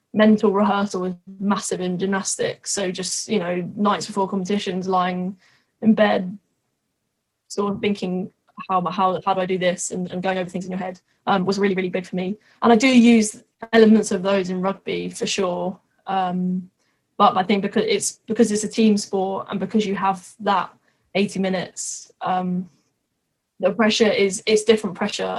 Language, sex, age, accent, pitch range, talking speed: English, female, 10-29, British, 185-210 Hz, 180 wpm